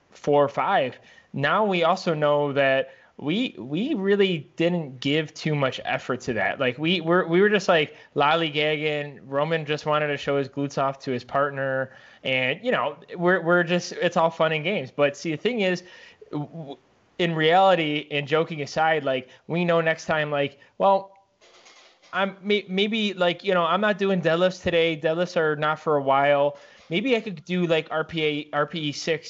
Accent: American